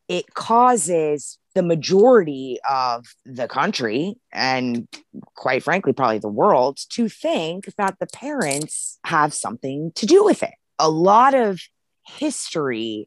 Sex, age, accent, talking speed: female, 20-39, American, 130 wpm